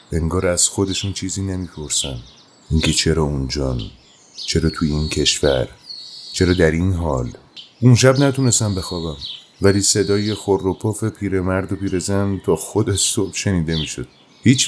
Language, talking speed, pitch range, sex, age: Persian, 135 wpm, 80-105 Hz, male, 30-49